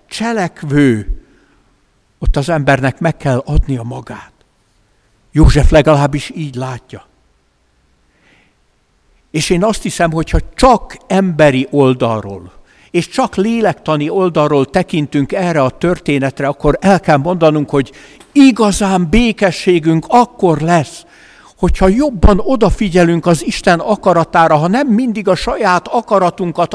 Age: 60-79